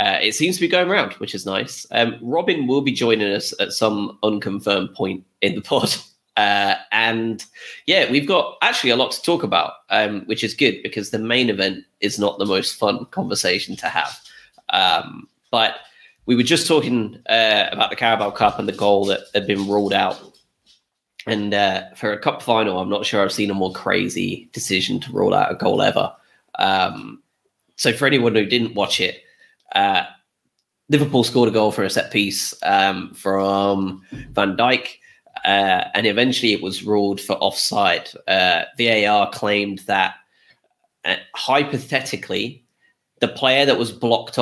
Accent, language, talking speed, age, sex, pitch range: British, English, 175 wpm, 20-39, male, 100-140 Hz